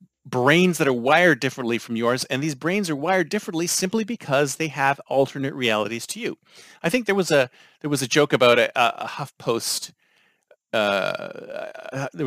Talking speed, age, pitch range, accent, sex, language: 180 wpm, 40-59, 135-185 Hz, American, male, English